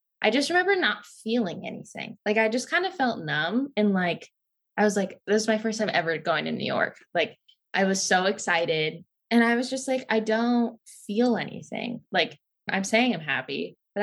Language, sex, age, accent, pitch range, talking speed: English, female, 10-29, American, 180-245 Hz, 205 wpm